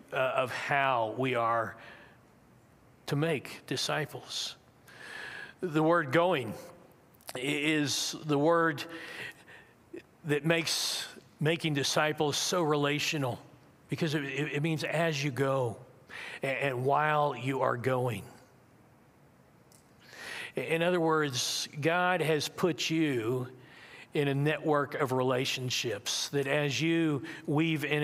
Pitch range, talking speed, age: 130-160 Hz, 100 wpm, 50-69